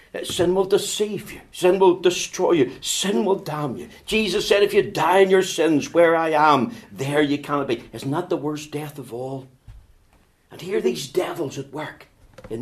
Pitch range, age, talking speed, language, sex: 130-185 Hz, 60-79, 200 wpm, English, male